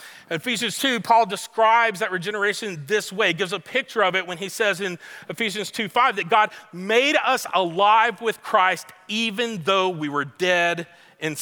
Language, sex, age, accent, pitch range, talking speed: English, male, 40-59, American, 155-195 Hz, 180 wpm